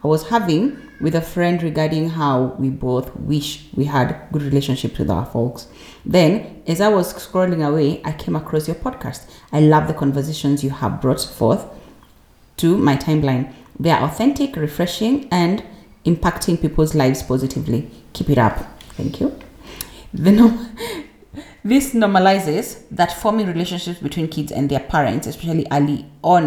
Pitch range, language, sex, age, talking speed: 140-170 Hz, English, female, 30-49, 150 wpm